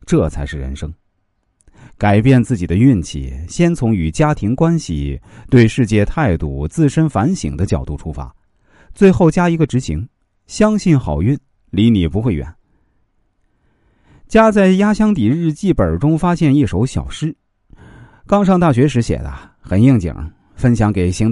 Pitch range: 90-140 Hz